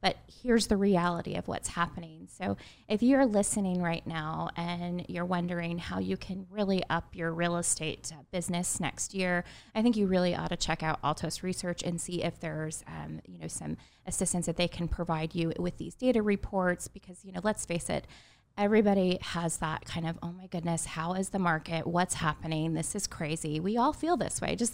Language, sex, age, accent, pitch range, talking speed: English, female, 20-39, American, 160-190 Hz, 205 wpm